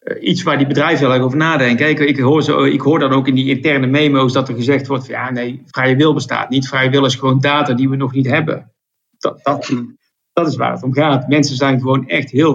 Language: Dutch